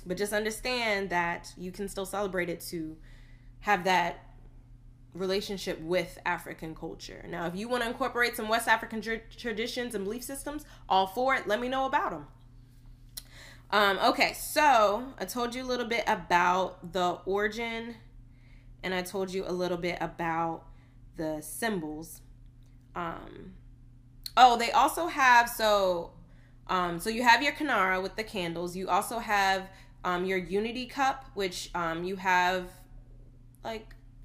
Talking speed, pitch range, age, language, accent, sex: 150 wpm, 155-205 Hz, 20-39, English, American, female